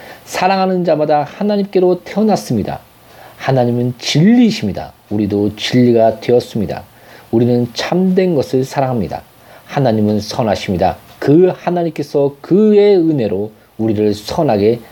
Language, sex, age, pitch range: Korean, male, 40-59, 115-175 Hz